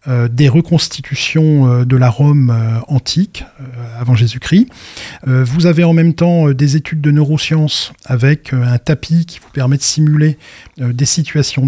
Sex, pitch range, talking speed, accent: male, 130-160 Hz, 180 wpm, French